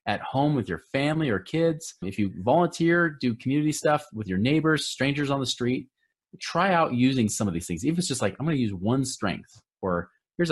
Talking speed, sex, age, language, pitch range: 220 wpm, male, 30-49, English, 110-150 Hz